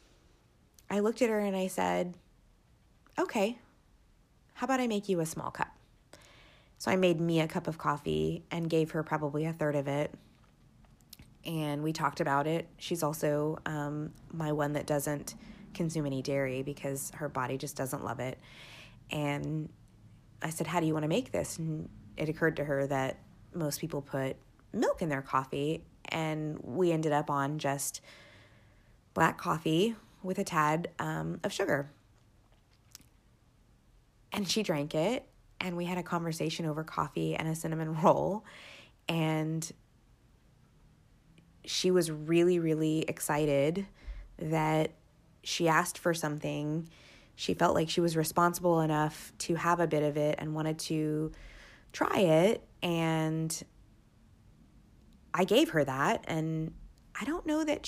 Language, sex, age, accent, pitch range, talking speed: English, female, 20-39, American, 140-170 Hz, 150 wpm